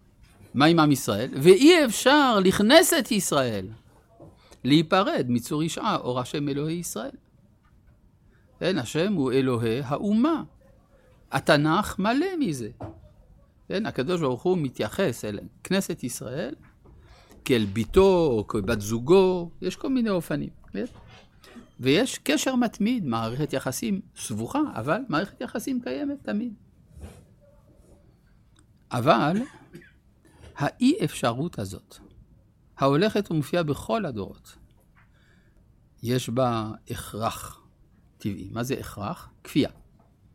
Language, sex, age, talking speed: Hebrew, male, 50-69, 100 wpm